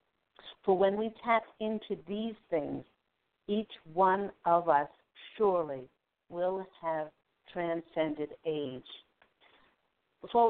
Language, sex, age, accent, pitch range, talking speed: English, female, 50-69, American, 170-210 Hz, 95 wpm